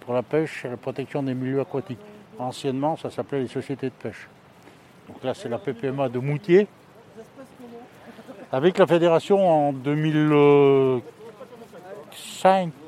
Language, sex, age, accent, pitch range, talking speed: French, male, 60-79, French, 130-170 Hz, 130 wpm